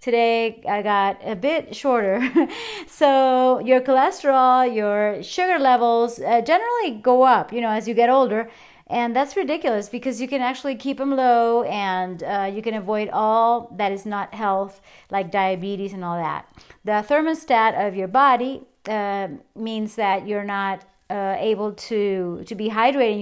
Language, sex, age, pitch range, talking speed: English, female, 40-59, 210-265 Hz, 165 wpm